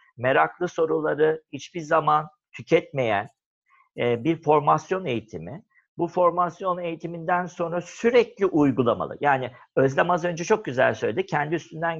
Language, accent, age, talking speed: Turkish, native, 50-69, 115 wpm